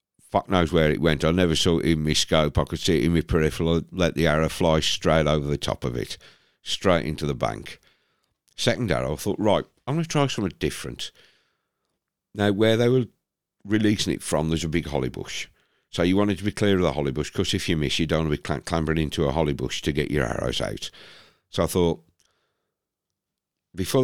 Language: English